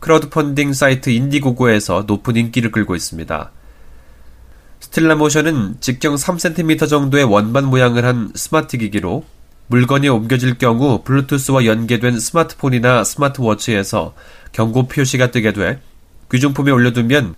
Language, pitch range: Korean, 105-140 Hz